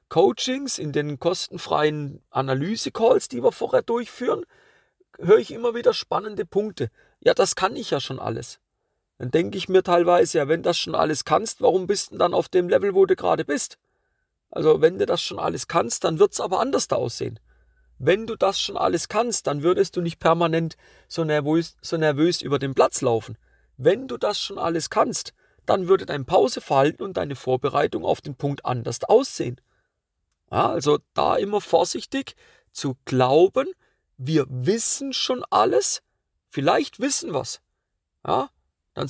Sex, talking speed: male, 170 wpm